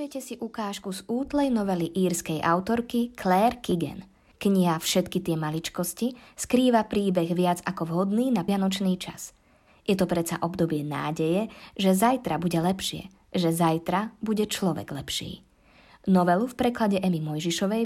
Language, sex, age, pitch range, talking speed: Slovak, female, 20-39, 170-220 Hz, 140 wpm